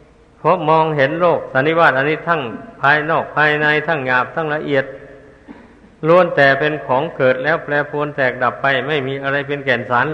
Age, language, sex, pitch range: 50-69, Thai, male, 140-160 Hz